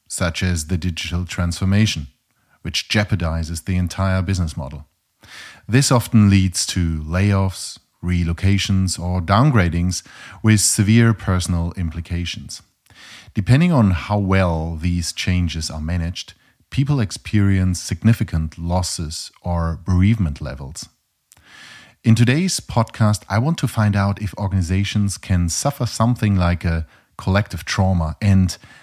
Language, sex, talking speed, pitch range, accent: English, male, 115 wpm, 90-110 Hz, German